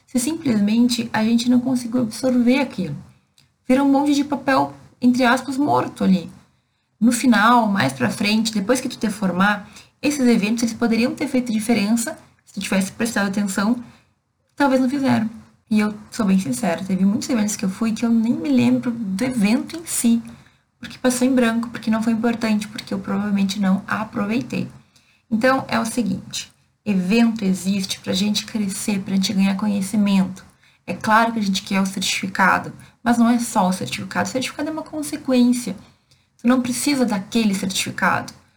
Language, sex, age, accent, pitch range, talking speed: Portuguese, female, 20-39, Brazilian, 205-245 Hz, 175 wpm